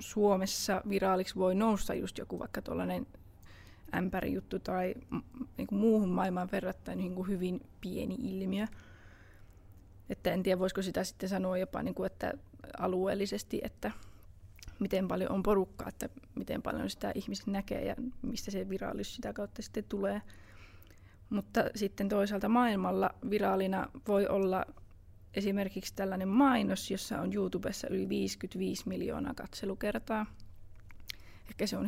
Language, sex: Finnish, female